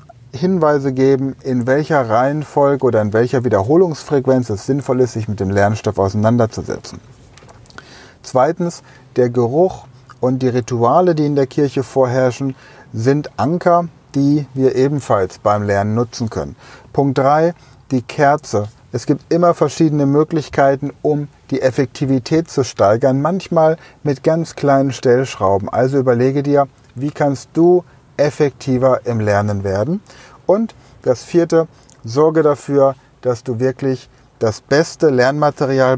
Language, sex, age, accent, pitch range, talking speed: German, male, 30-49, German, 125-150 Hz, 130 wpm